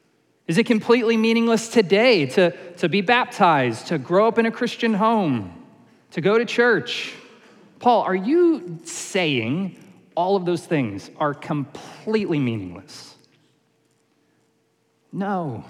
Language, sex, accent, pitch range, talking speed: English, male, American, 150-215 Hz, 120 wpm